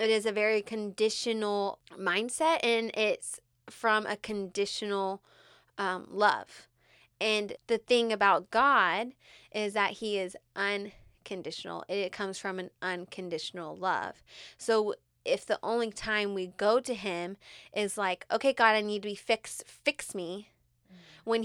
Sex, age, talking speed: female, 20-39, 140 wpm